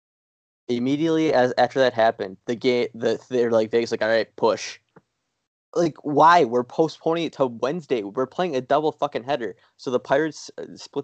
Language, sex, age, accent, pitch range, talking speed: English, male, 20-39, American, 115-155 Hz, 175 wpm